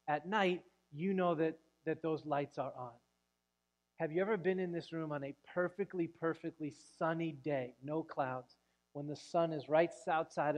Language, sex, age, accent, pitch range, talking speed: English, male, 30-49, American, 130-165 Hz, 175 wpm